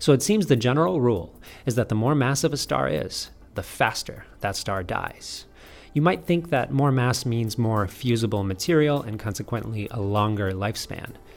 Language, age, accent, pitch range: English, 30-49, American, 100-125 Hz